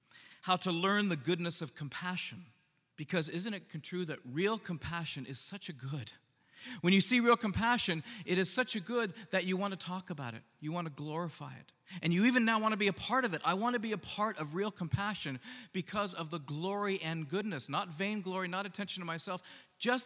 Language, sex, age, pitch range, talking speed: English, male, 40-59, 150-200 Hz, 220 wpm